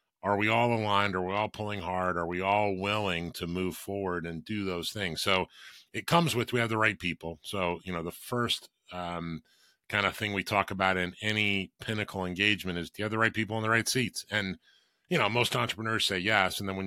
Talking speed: 230 wpm